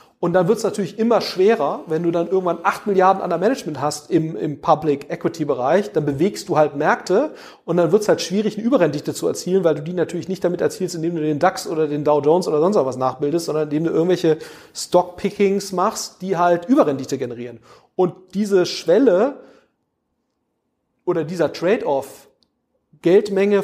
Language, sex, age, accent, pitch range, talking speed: German, male, 40-59, German, 155-200 Hz, 180 wpm